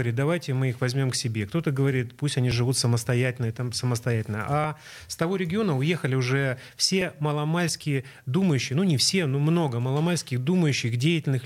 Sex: male